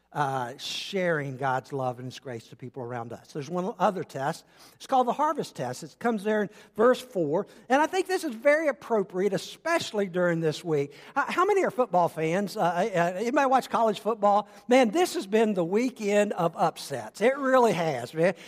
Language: English